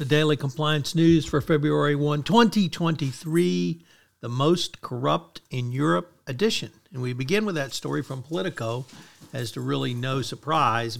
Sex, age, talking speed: male, 60-79, 145 wpm